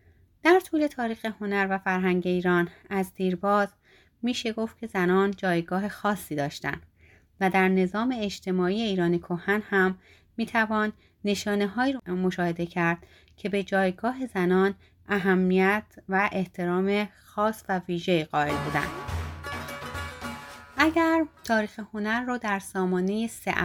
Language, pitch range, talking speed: Persian, 180-215 Hz, 120 wpm